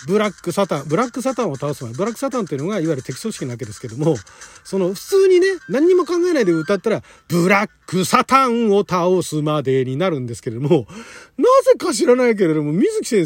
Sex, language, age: male, Japanese, 40-59